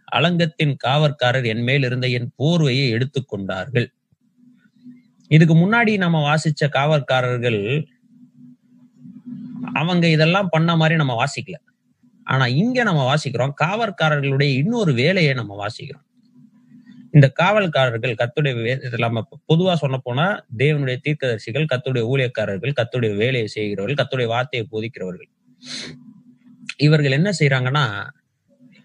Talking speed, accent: 100 wpm, native